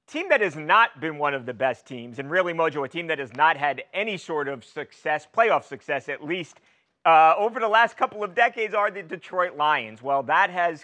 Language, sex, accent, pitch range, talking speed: English, male, American, 140-180 Hz, 225 wpm